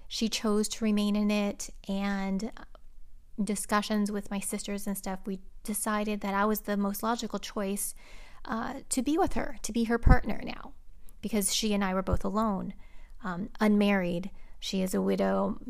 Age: 30-49